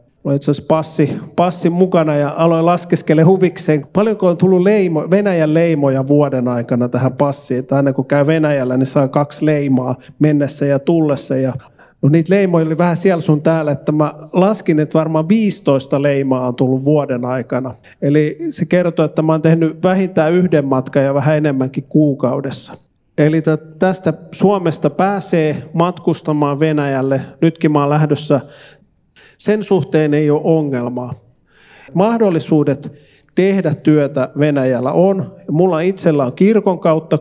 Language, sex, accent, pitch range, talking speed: Finnish, male, native, 140-165 Hz, 140 wpm